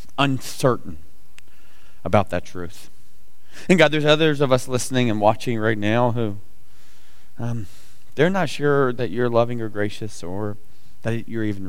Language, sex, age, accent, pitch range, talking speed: English, male, 30-49, American, 100-120 Hz, 150 wpm